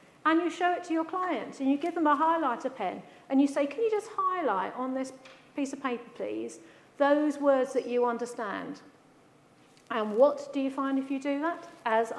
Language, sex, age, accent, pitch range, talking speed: English, female, 50-69, British, 220-280 Hz, 205 wpm